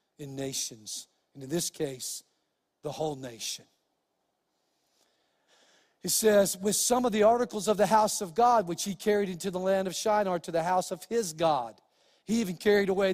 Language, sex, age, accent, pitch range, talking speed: English, male, 50-69, American, 160-210 Hz, 180 wpm